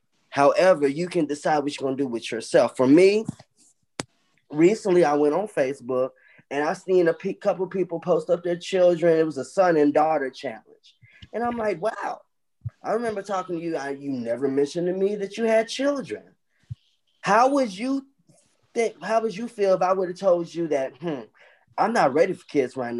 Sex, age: male, 20-39